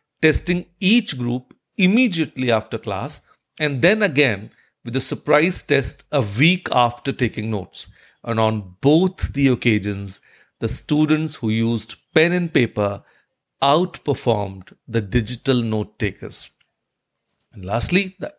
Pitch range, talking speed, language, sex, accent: 120-175 Hz, 125 wpm, English, male, Indian